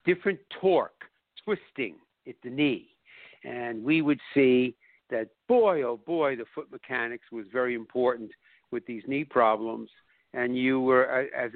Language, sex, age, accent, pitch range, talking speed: English, male, 60-79, American, 125-165 Hz, 145 wpm